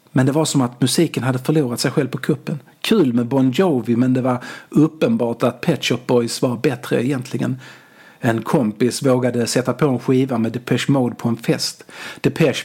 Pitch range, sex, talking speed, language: 130-175 Hz, male, 195 wpm, Swedish